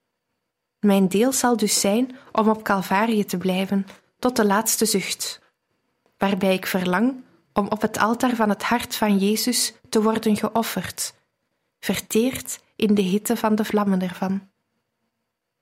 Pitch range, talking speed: 195-235 Hz, 140 wpm